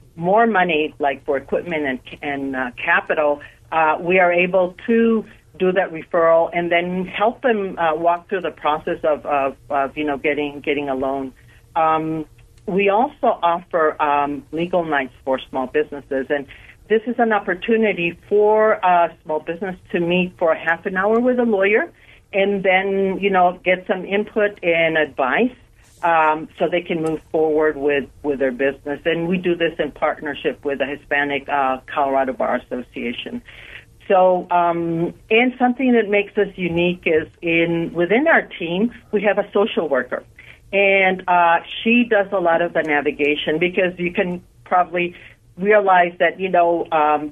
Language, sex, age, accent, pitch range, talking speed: English, female, 60-79, American, 145-190 Hz, 165 wpm